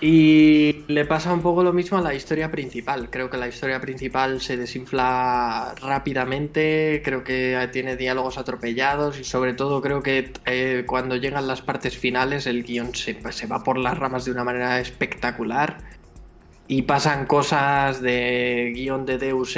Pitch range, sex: 125-145 Hz, male